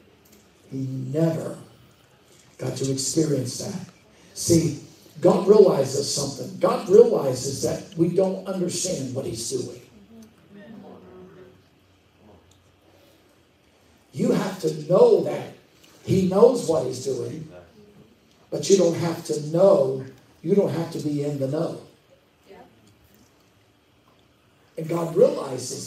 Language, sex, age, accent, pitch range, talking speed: English, male, 60-79, American, 150-190 Hz, 105 wpm